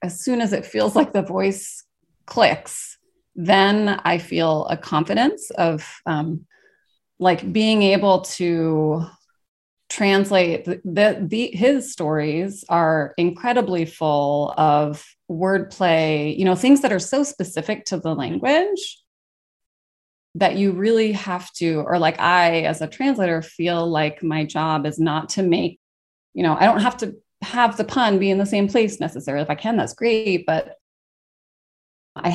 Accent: American